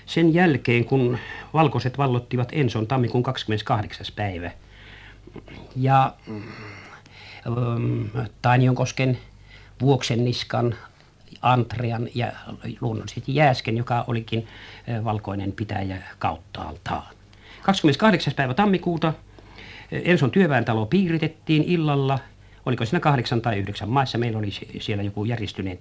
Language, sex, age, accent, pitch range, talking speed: Finnish, male, 50-69, native, 105-140 Hz, 95 wpm